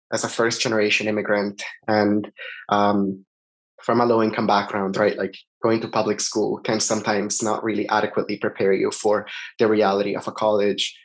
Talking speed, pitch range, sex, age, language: 165 wpm, 115-145 Hz, male, 20-39, English